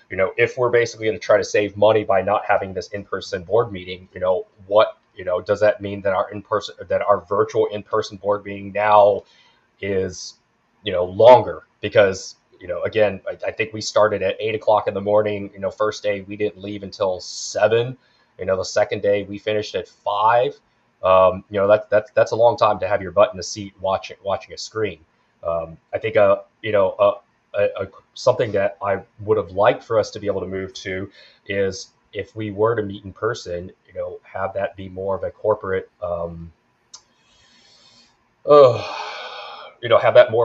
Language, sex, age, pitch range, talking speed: English, male, 30-49, 95-145 Hz, 210 wpm